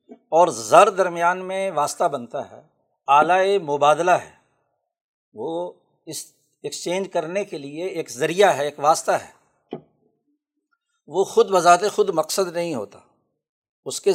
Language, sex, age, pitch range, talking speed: Urdu, male, 60-79, 160-205 Hz, 130 wpm